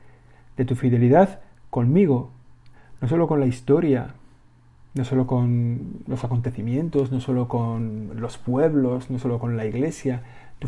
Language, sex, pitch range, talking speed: Spanish, male, 120-135 Hz, 140 wpm